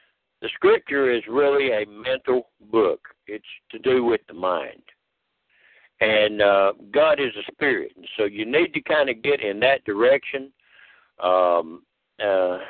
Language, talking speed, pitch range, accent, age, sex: English, 140 wpm, 115-165 Hz, American, 60-79, male